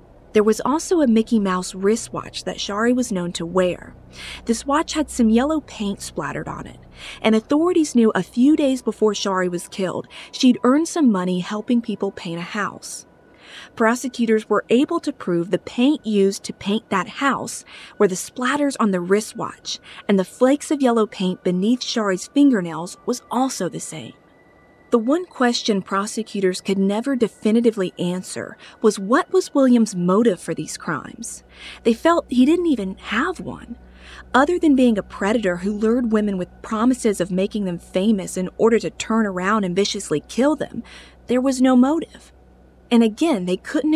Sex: female